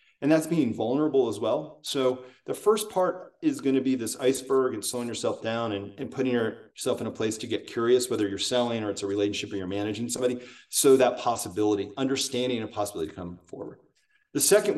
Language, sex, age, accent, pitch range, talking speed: English, male, 30-49, American, 115-160 Hz, 210 wpm